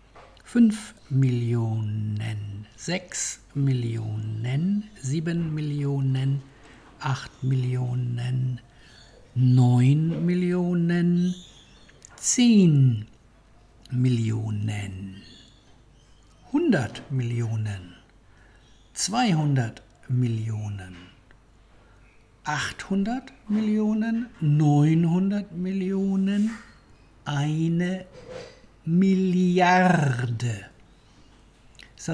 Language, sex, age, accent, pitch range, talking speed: English, male, 60-79, German, 115-170 Hz, 45 wpm